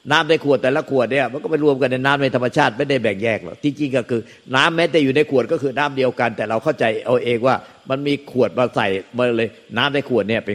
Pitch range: 115-145 Hz